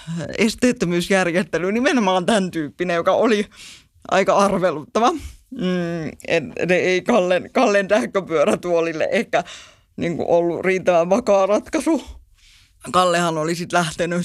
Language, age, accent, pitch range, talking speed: Finnish, 20-39, native, 180-215 Hz, 100 wpm